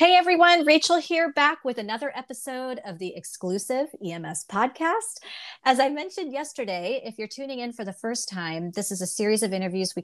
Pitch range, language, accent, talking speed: 185-255 Hz, English, American, 190 wpm